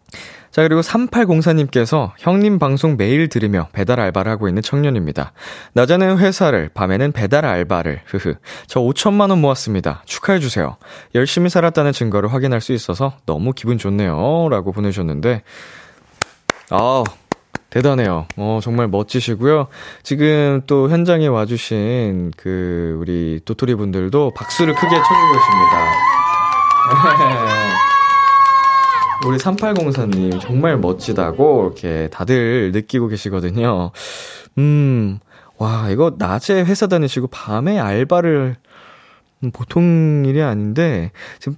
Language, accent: Korean, native